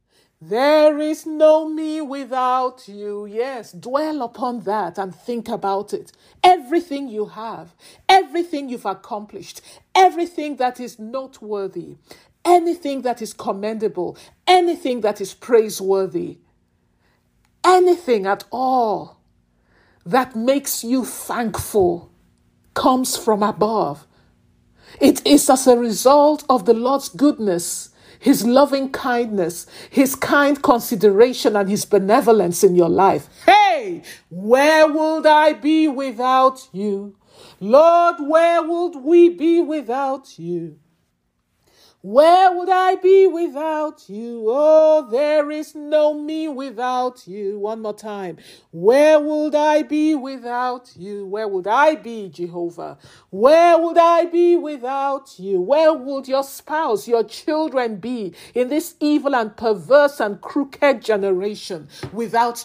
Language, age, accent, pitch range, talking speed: English, 50-69, Nigerian, 210-310 Hz, 120 wpm